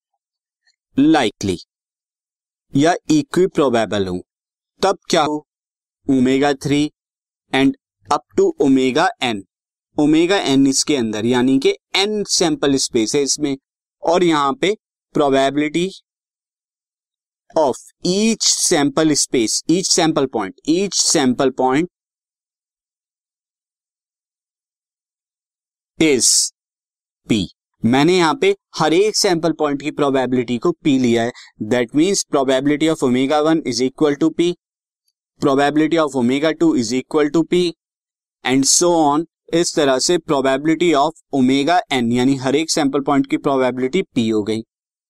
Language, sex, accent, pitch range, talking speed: Hindi, male, native, 135-175 Hz, 120 wpm